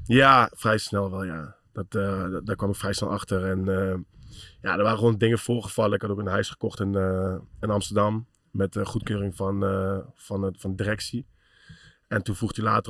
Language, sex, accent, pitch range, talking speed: Dutch, male, Dutch, 100-110 Hz, 215 wpm